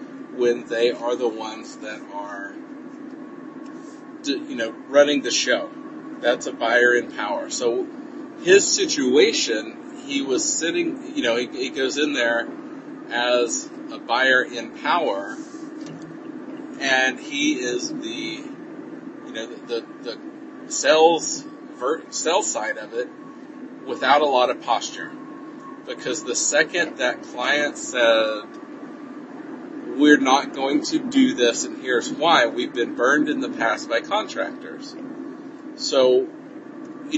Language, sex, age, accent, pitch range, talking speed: English, male, 40-59, American, 285-310 Hz, 130 wpm